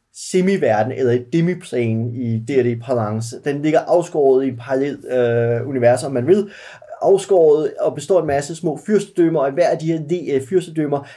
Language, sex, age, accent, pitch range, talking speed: Danish, male, 30-49, native, 130-170 Hz, 175 wpm